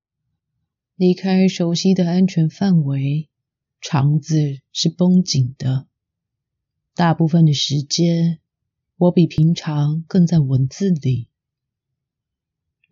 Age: 30-49